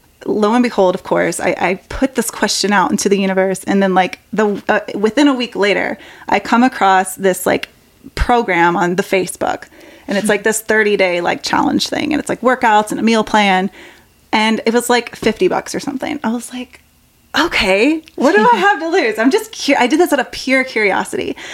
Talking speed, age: 210 wpm, 20-39